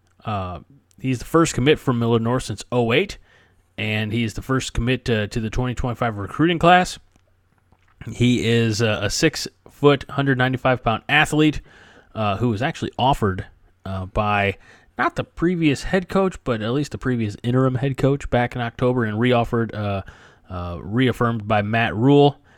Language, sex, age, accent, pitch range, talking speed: English, male, 30-49, American, 100-130 Hz, 155 wpm